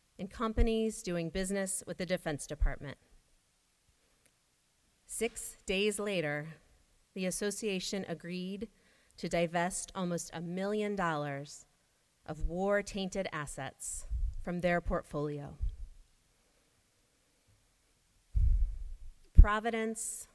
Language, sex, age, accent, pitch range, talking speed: English, female, 30-49, American, 150-200 Hz, 80 wpm